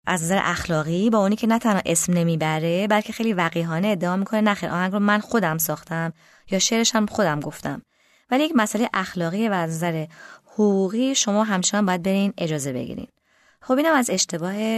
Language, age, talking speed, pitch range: Persian, 20-39, 190 wpm, 165-225 Hz